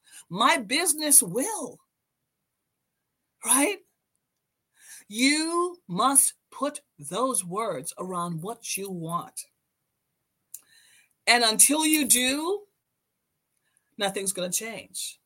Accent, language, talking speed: American, English, 85 wpm